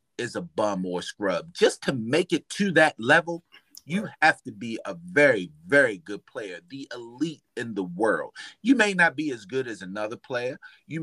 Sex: male